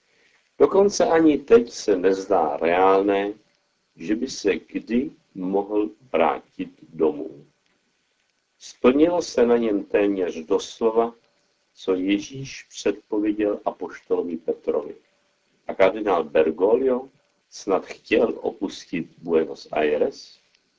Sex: male